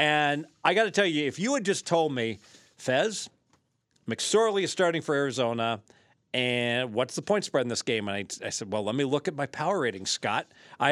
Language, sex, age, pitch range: English, male, 40-59, 125-155 Hz